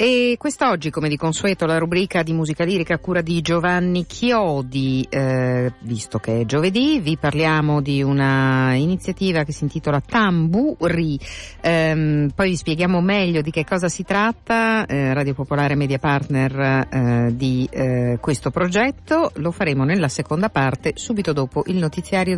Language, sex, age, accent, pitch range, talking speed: Italian, female, 50-69, native, 130-180 Hz, 155 wpm